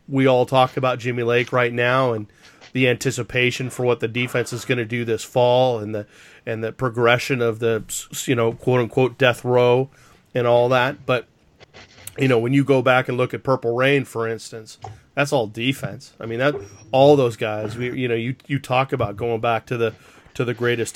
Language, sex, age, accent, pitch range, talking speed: English, male, 30-49, American, 115-135 Hz, 210 wpm